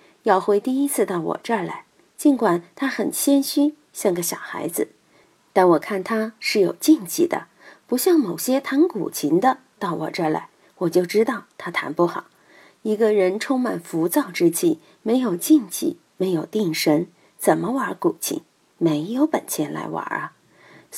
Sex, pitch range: female, 185-300 Hz